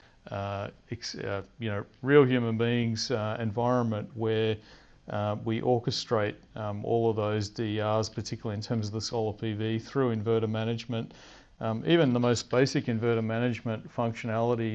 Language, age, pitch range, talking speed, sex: English, 40-59, 110-125 Hz, 150 wpm, male